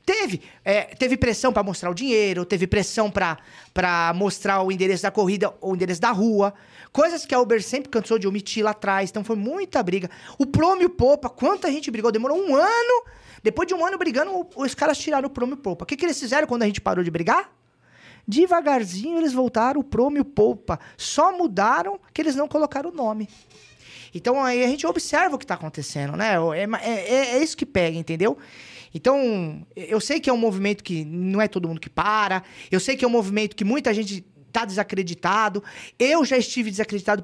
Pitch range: 190-270 Hz